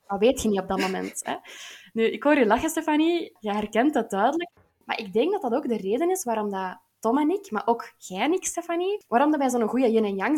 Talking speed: 265 wpm